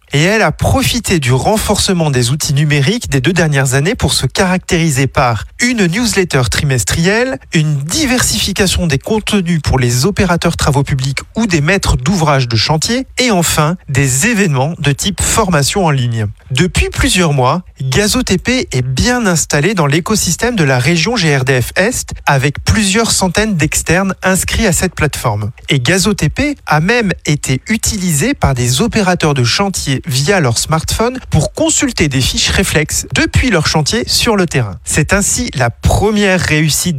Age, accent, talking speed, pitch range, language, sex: 40-59, French, 155 wpm, 135-195 Hz, French, male